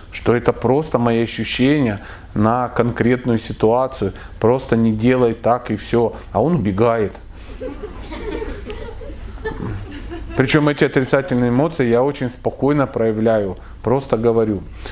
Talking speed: 110 wpm